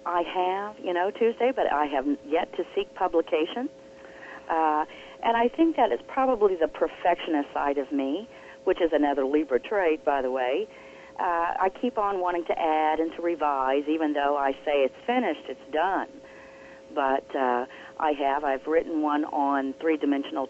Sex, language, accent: female, English, American